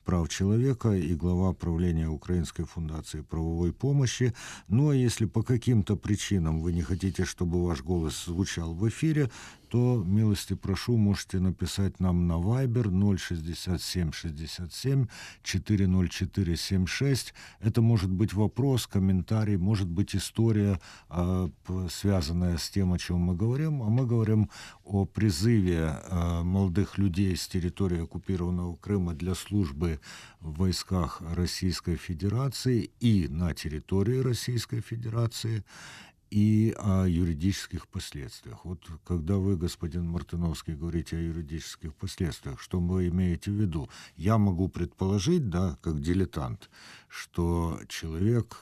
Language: Russian